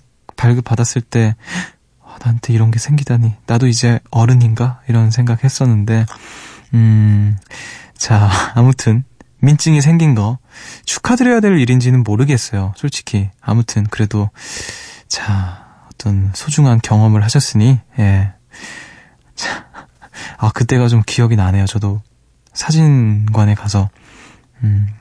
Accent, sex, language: native, male, Korean